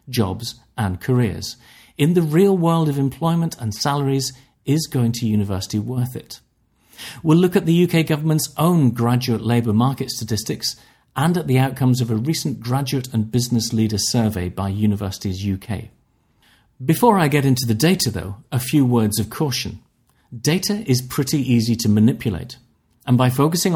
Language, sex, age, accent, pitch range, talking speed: English, male, 40-59, British, 110-135 Hz, 160 wpm